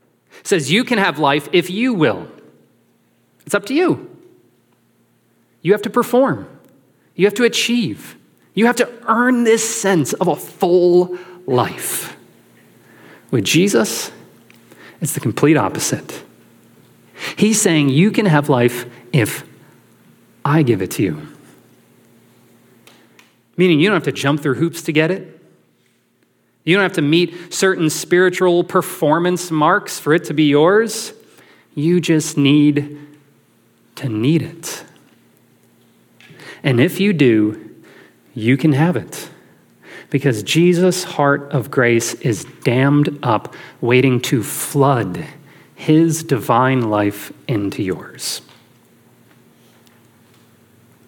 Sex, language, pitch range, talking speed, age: male, English, 125-180 Hz, 120 wpm, 30-49